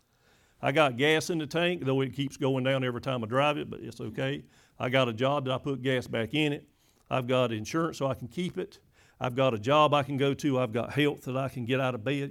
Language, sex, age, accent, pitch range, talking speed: English, male, 50-69, American, 125-175 Hz, 275 wpm